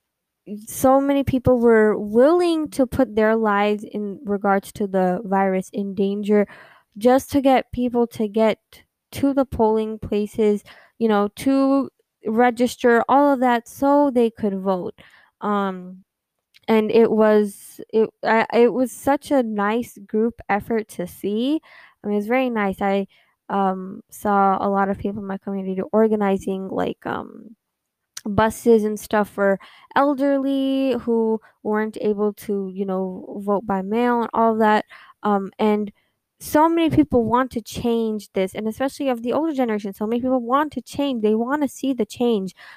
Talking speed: 160 wpm